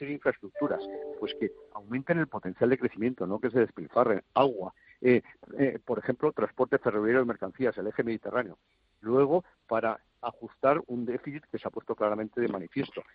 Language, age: Spanish, 50-69